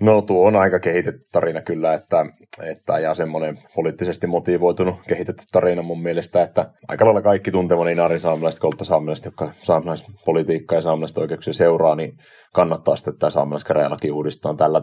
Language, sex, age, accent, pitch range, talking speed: Finnish, male, 30-49, native, 80-90 Hz, 155 wpm